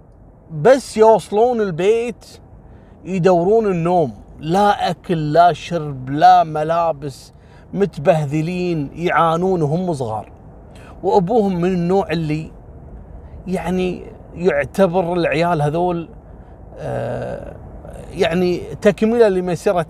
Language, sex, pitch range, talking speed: Arabic, male, 140-235 Hz, 80 wpm